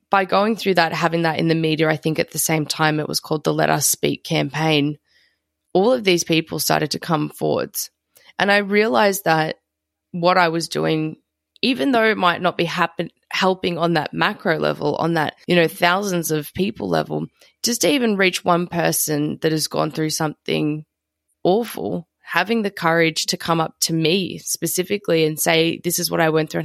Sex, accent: female, Australian